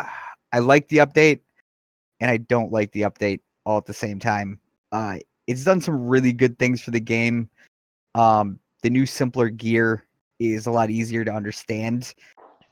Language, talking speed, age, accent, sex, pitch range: English, 170 wpm, 30-49, American, male, 105-125 Hz